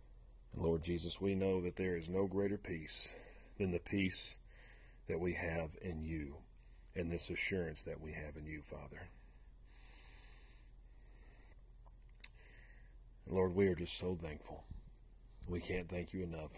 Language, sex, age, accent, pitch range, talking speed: English, male, 40-59, American, 75-100 Hz, 140 wpm